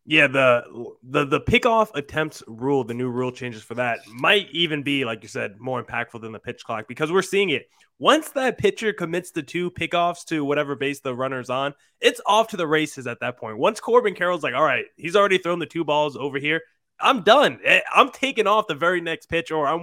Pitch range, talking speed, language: 130-170 Hz, 225 wpm, English